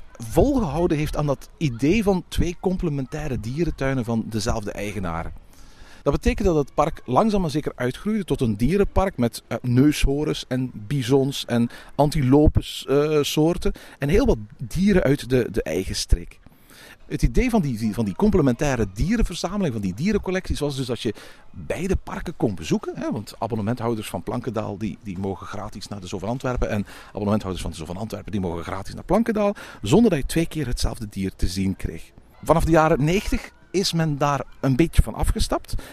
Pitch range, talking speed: 105-160 Hz, 175 wpm